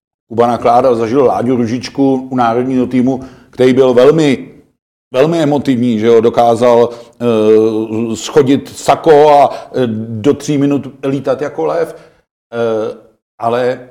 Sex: male